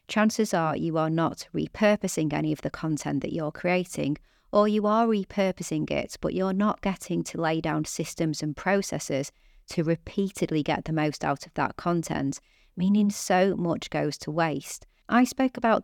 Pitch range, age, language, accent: 155-190 Hz, 30-49, English, British